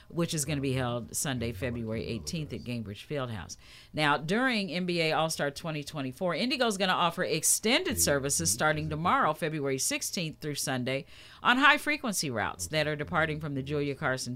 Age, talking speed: 50-69, 165 wpm